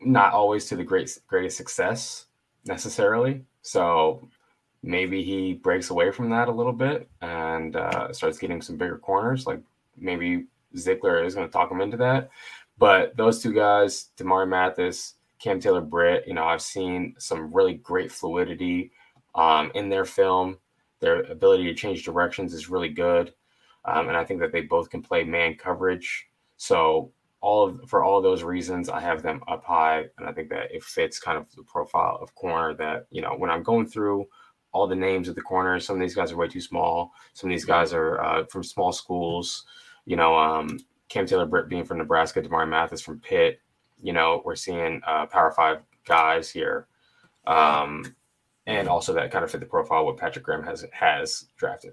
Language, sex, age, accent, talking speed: English, male, 20-39, American, 195 wpm